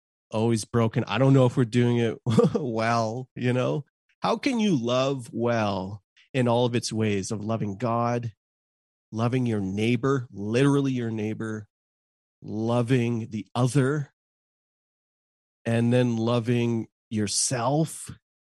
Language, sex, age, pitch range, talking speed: English, male, 40-59, 105-135 Hz, 125 wpm